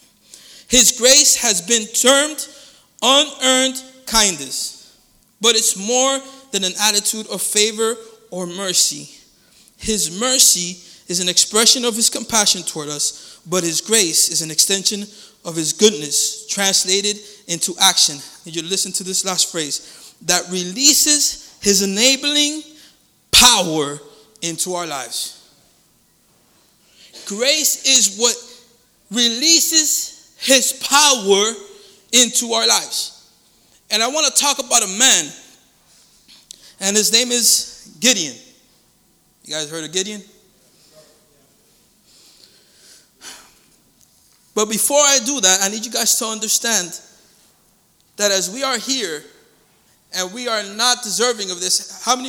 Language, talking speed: English, 120 wpm